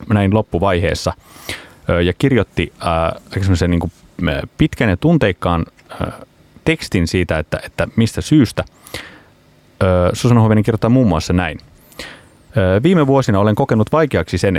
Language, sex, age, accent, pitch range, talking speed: Finnish, male, 30-49, native, 85-105 Hz, 120 wpm